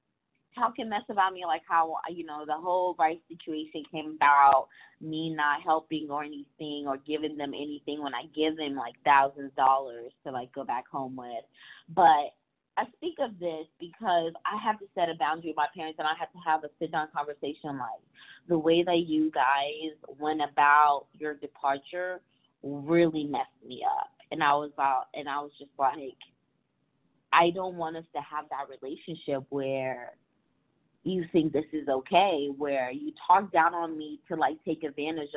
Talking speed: 185 wpm